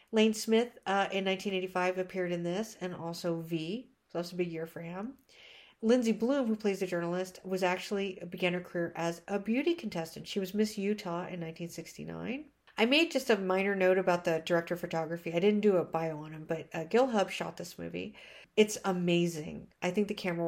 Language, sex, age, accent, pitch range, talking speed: English, female, 50-69, American, 170-205 Hz, 205 wpm